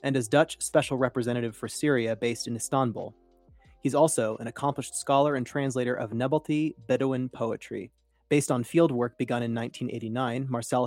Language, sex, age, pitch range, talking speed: English, male, 30-49, 115-135 Hz, 155 wpm